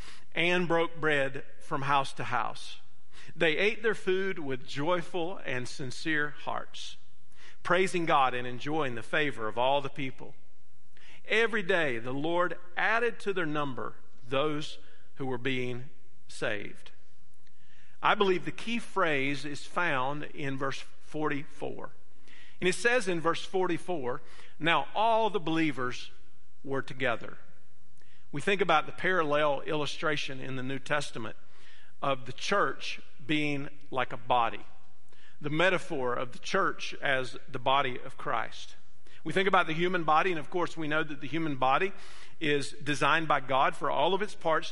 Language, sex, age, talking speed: English, male, 50-69, 150 wpm